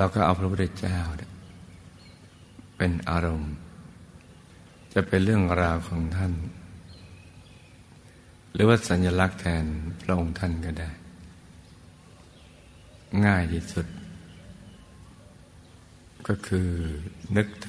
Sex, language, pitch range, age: male, Thai, 85-95 Hz, 60-79